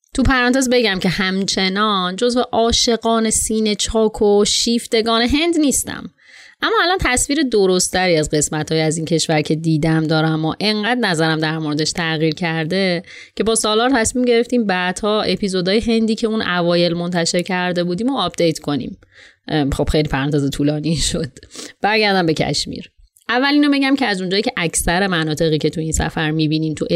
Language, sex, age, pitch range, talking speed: Persian, female, 30-49, 160-230 Hz, 165 wpm